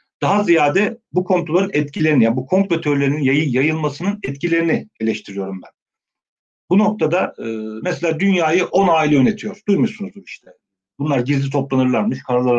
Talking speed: 140 wpm